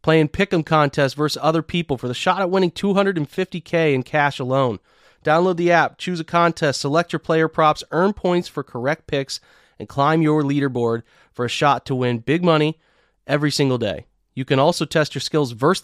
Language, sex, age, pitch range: English, male, 30-49, 130-165 Hz